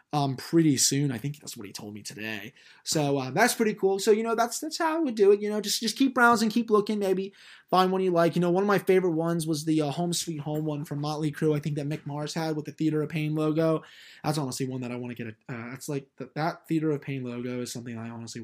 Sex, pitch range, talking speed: male, 130-175 Hz, 295 wpm